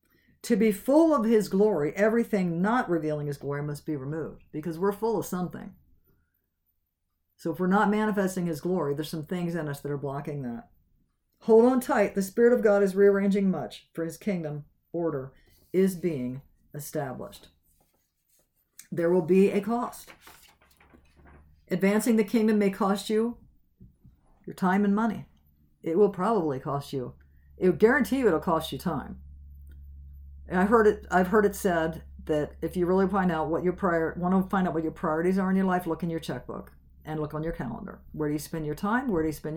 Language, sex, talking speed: English, female, 195 wpm